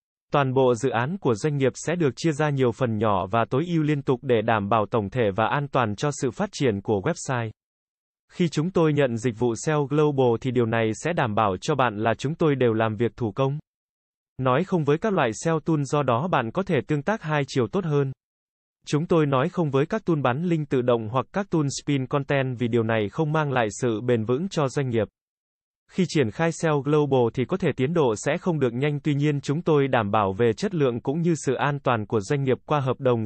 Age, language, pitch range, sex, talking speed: 20-39, Vietnamese, 120-155 Hz, male, 245 wpm